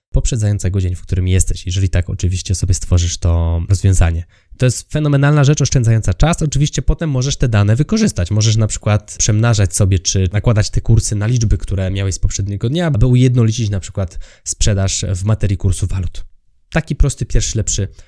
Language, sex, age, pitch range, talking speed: Polish, male, 20-39, 95-125 Hz, 175 wpm